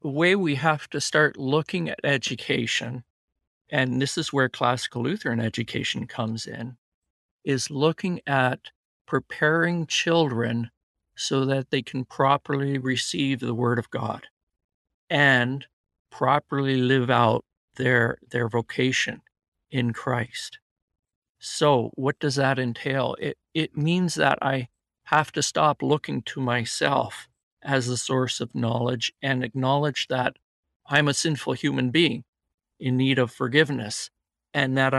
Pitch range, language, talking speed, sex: 120-145 Hz, English, 130 wpm, male